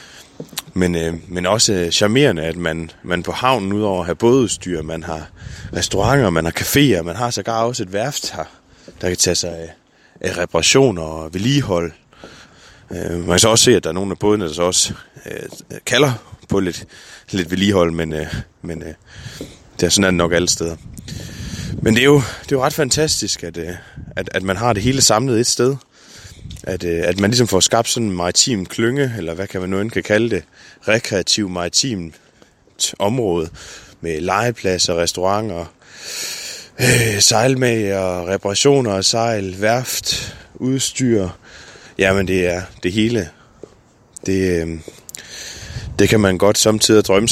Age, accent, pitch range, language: 20-39, native, 90-115 Hz, Danish